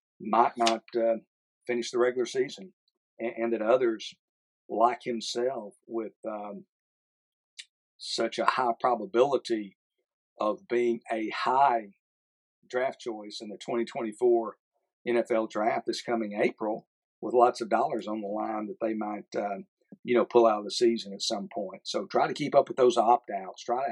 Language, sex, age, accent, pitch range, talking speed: English, male, 50-69, American, 110-120 Hz, 165 wpm